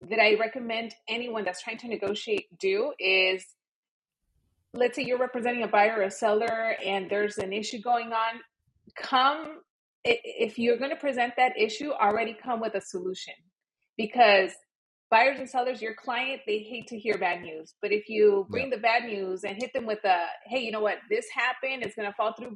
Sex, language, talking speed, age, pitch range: female, English, 195 wpm, 30-49, 195-235 Hz